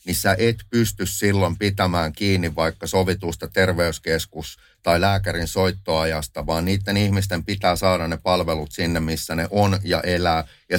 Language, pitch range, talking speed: Finnish, 85-100 Hz, 145 wpm